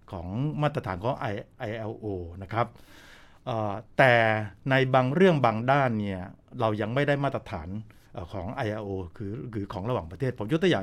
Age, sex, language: 60-79, male, Thai